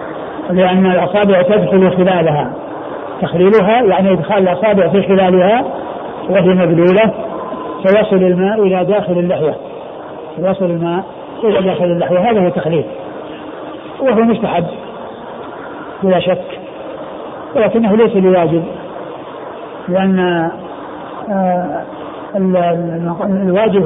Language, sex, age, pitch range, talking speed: Arabic, male, 60-79, 180-200 Hz, 85 wpm